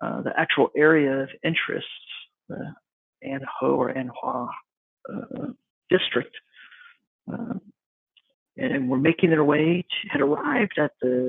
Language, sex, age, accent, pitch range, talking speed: English, male, 50-69, American, 125-170 Hz, 130 wpm